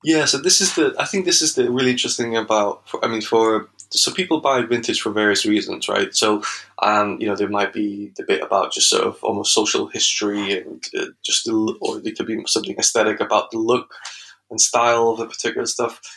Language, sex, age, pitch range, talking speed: English, male, 20-39, 105-130 Hz, 220 wpm